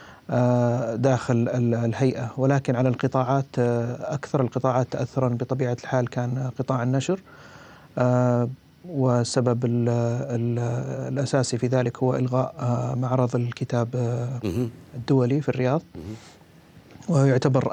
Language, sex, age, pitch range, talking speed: Arabic, male, 30-49, 120-130 Hz, 85 wpm